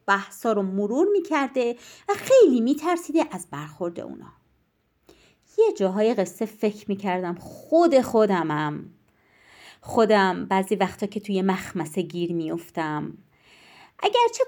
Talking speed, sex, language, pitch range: 110 wpm, female, Persian, 185-285 Hz